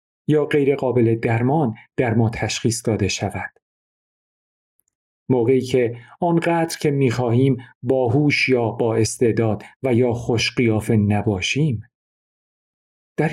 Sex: male